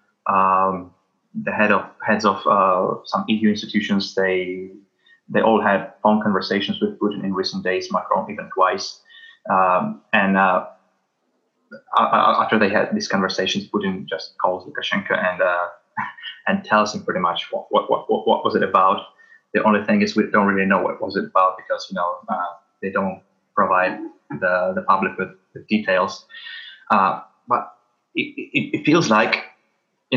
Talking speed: 165 wpm